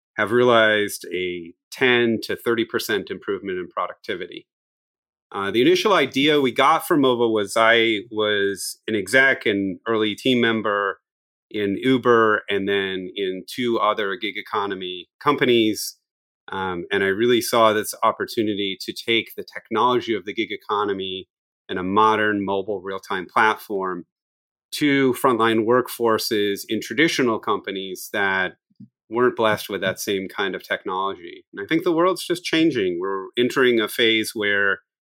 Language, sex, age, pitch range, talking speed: English, male, 30-49, 100-125 Hz, 145 wpm